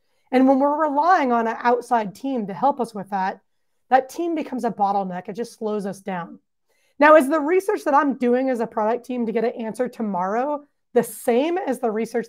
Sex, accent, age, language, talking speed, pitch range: female, American, 30-49, English, 215 wpm, 220-270 Hz